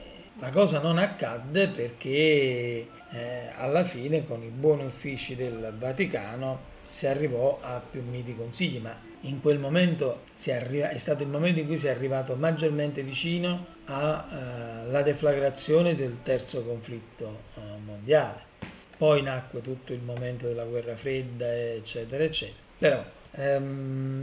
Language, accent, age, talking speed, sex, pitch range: Italian, native, 40-59, 140 wpm, male, 125-160 Hz